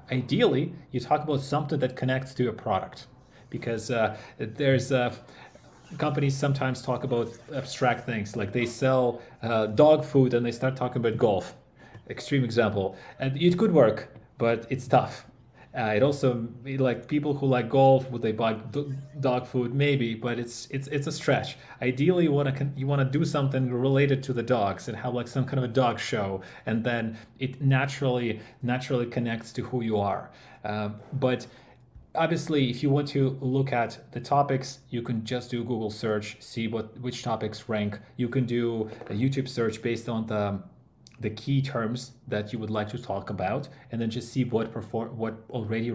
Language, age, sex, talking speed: English, 30-49, male, 185 wpm